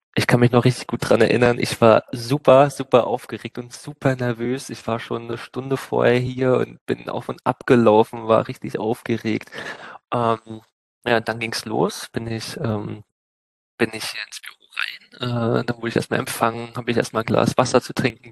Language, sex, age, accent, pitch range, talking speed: German, male, 20-39, German, 110-125 Hz, 195 wpm